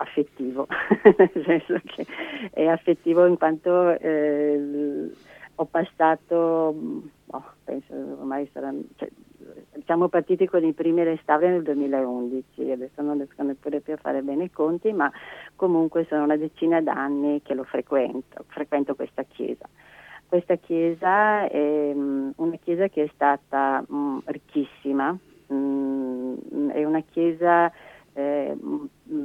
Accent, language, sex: native, Italian, female